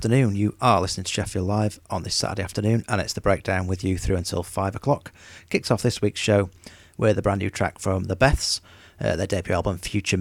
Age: 40-59